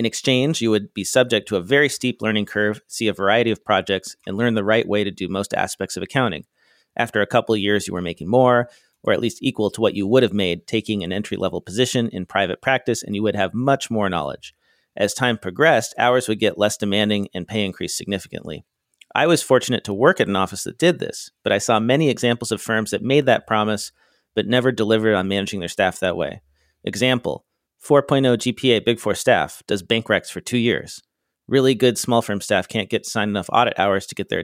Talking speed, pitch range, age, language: 230 wpm, 100-125 Hz, 40-59, English